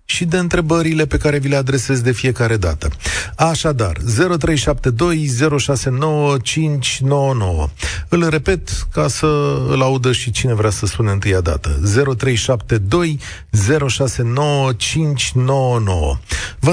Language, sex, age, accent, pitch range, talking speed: Romanian, male, 40-59, native, 110-160 Hz, 110 wpm